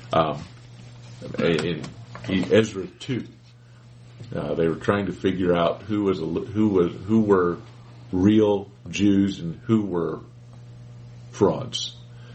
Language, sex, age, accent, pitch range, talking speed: English, male, 40-59, American, 95-120 Hz, 100 wpm